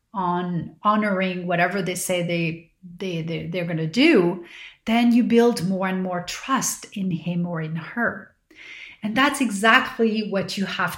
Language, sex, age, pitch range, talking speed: English, female, 30-49, 180-235 Hz, 165 wpm